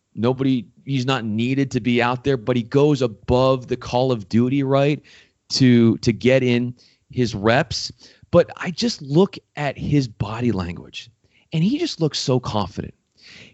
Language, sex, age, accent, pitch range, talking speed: English, male, 30-49, American, 120-170 Hz, 165 wpm